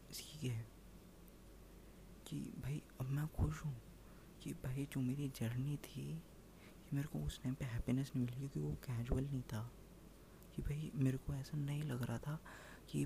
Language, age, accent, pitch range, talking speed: Hindi, 20-39, native, 120-150 Hz, 165 wpm